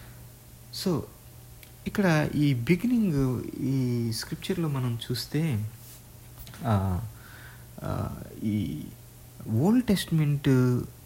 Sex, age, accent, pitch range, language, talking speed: male, 50-69, native, 115-145 Hz, Telugu, 60 wpm